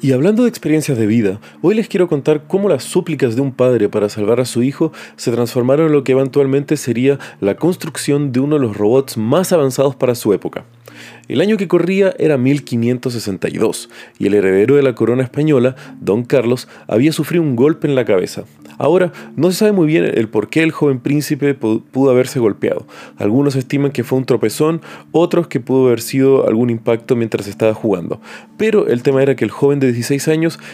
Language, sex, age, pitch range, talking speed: Spanish, male, 30-49, 110-140 Hz, 200 wpm